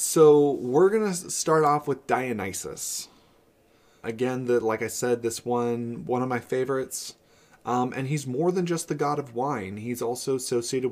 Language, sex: English, male